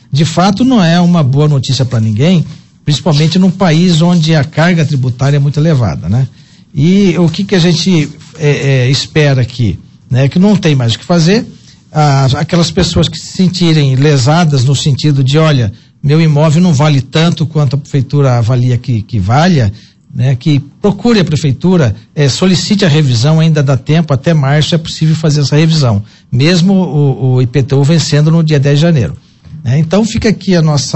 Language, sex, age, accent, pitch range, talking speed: Portuguese, male, 60-79, Brazilian, 140-180 Hz, 175 wpm